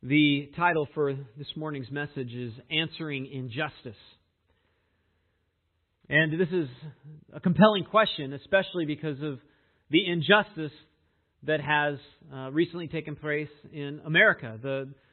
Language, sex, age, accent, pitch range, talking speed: English, male, 40-59, American, 135-190 Hz, 110 wpm